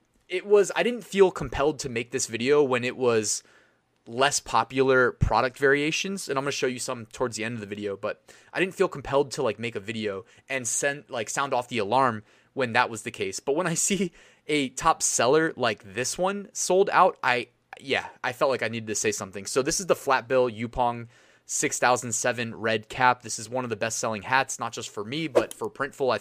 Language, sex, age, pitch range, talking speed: English, male, 20-39, 115-150 Hz, 220 wpm